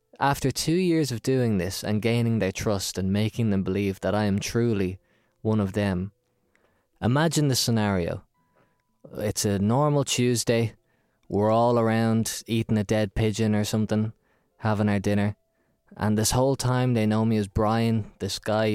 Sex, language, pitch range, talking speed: male, English, 105-125 Hz, 165 wpm